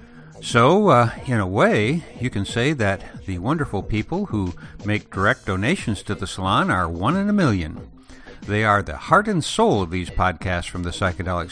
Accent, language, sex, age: American, English, male, 60-79